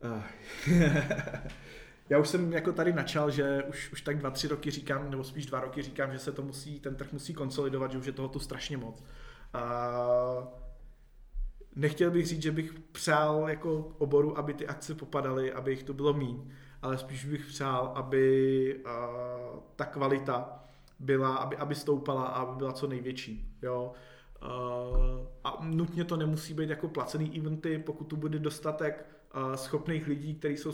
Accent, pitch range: native, 130-150 Hz